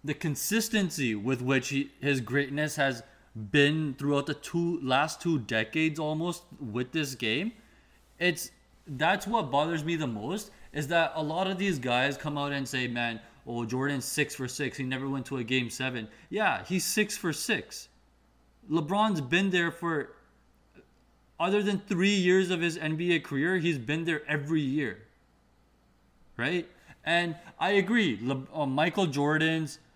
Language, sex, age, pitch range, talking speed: English, male, 20-39, 125-160 Hz, 160 wpm